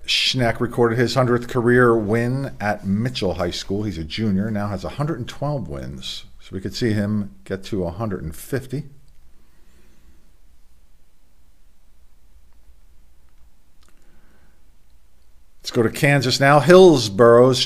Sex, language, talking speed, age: male, English, 105 wpm, 50-69